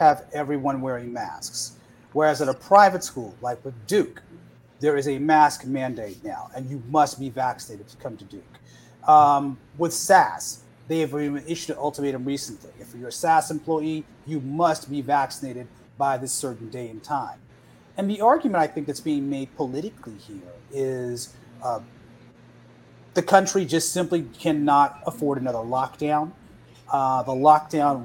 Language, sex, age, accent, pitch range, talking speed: English, male, 30-49, American, 130-160 Hz, 160 wpm